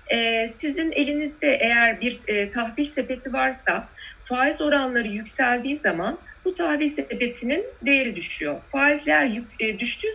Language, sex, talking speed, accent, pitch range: Turkish, female, 105 wpm, native, 220-285 Hz